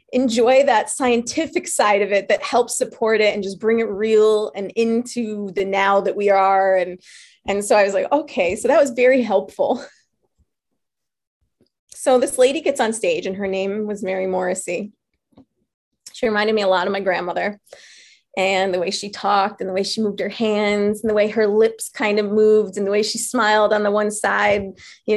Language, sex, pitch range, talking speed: English, female, 205-255 Hz, 200 wpm